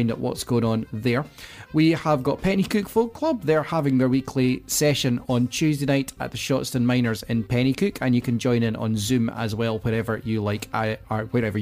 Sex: male